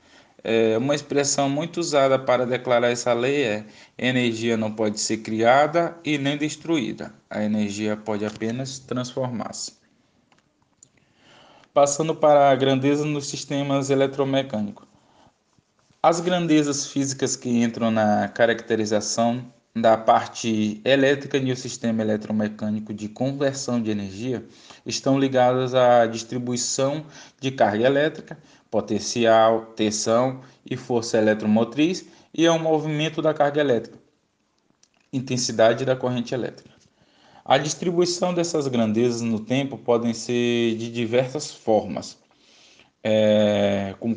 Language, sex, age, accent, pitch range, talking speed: Portuguese, male, 20-39, Brazilian, 110-140 Hz, 115 wpm